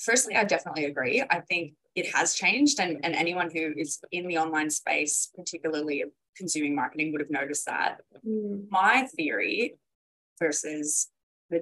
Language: English